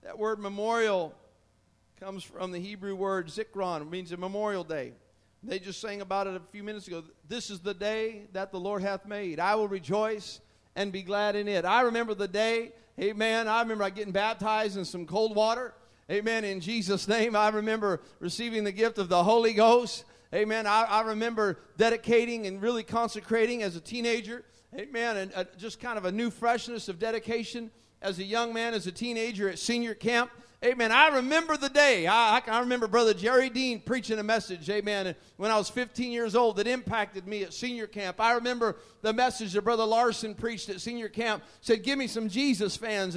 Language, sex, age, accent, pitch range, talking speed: English, male, 50-69, American, 200-235 Hz, 195 wpm